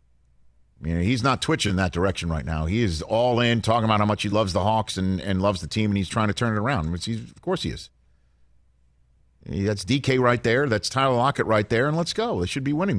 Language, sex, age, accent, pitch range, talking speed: English, male, 50-69, American, 80-115 Hz, 260 wpm